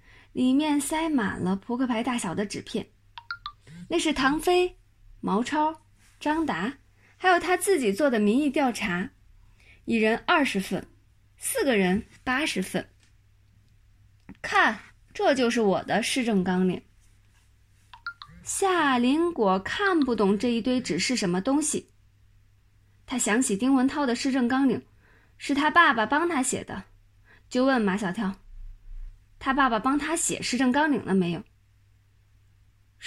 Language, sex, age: Chinese, female, 20-39